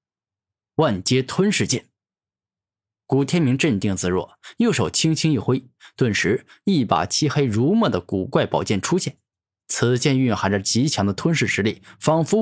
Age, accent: 10-29, native